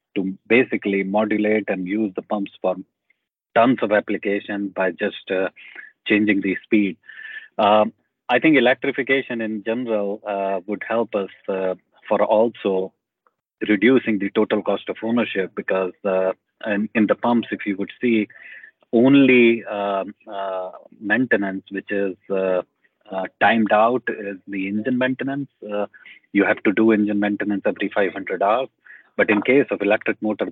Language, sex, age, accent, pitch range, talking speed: English, male, 30-49, Indian, 95-110 Hz, 150 wpm